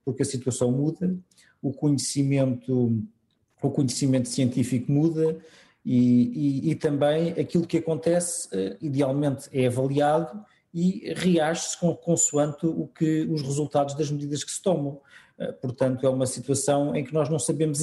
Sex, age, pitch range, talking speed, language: male, 50-69, 125-160 Hz, 150 wpm, Portuguese